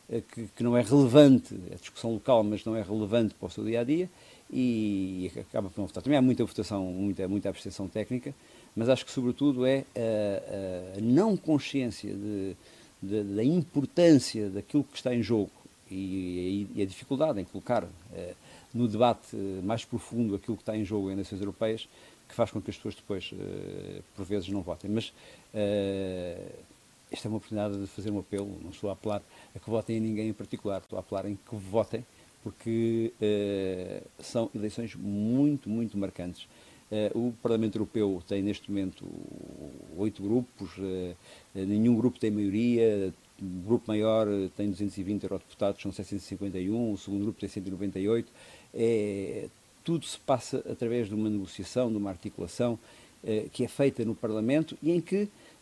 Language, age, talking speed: Portuguese, 50-69, 165 wpm